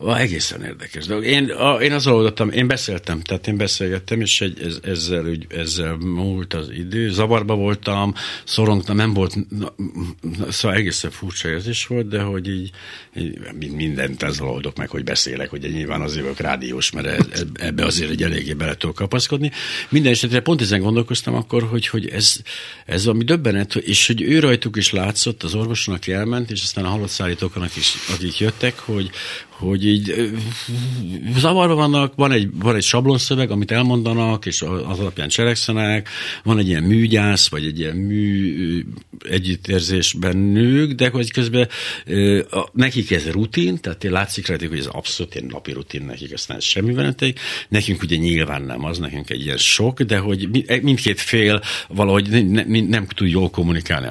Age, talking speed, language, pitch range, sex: 60-79, 165 wpm, Hungarian, 85-115 Hz, male